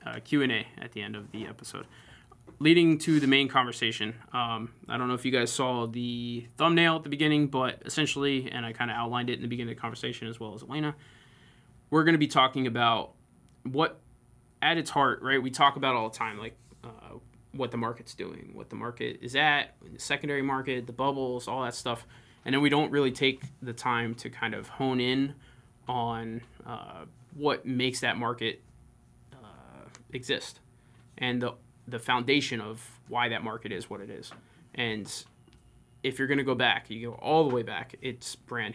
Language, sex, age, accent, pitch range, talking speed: English, male, 20-39, American, 120-135 Hz, 195 wpm